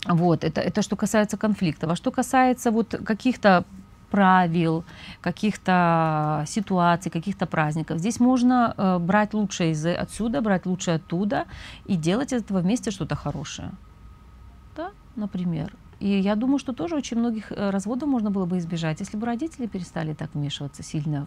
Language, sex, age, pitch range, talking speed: Russian, female, 30-49, 160-220 Hz, 150 wpm